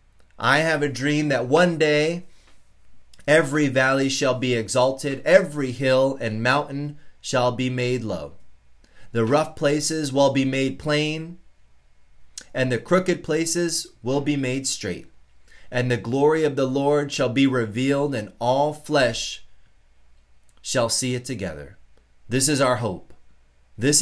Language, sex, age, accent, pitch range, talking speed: English, male, 30-49, American, 110-150 Hz, 140 wpm